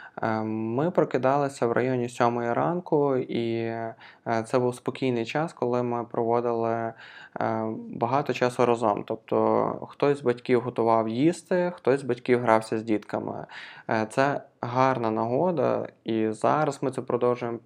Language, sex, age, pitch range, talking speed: Ukrainian, male, 20-39, 115-130 Hz, 125 wpm